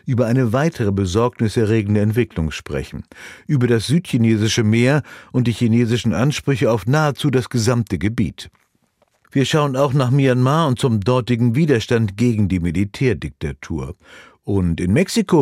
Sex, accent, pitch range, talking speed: male, German, 105-135 Hz, 130 wpm